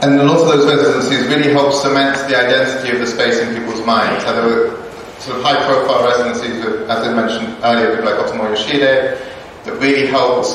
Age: 30-49